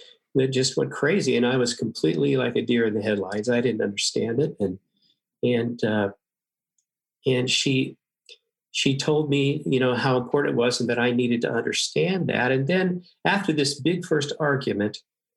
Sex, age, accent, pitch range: male, 50-69, American, 120-145 Hz